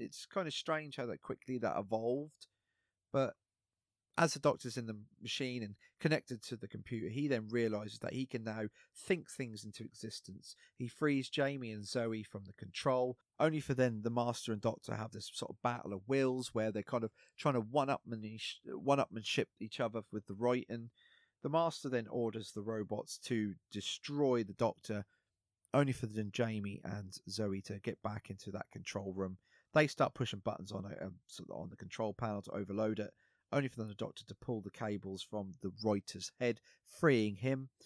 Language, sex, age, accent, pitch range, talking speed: English, male, 30-49, British, 100-125 Hz, 190 wpm